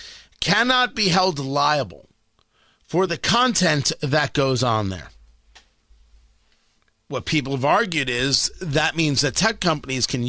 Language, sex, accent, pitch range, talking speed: English, male, American, 125-180 Hz, 130 wpm